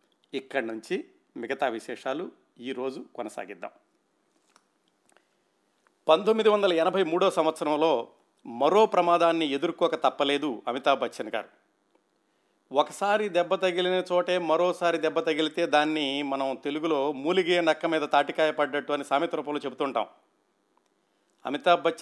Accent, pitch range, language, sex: native, 140-170 Hz, Telugu, male